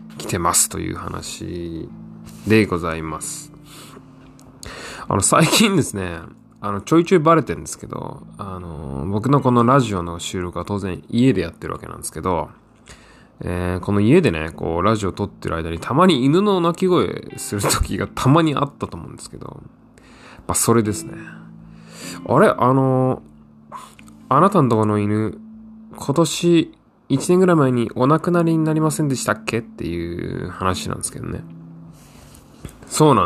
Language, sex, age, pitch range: Japanese, male, 20-39, 90-140 Hz